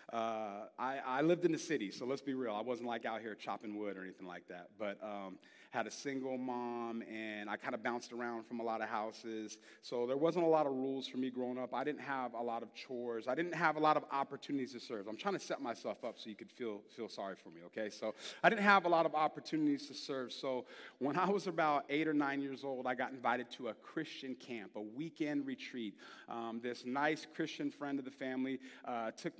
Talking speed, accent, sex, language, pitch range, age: 245 wpm, American, male, English, 120-150 Hz, 30-49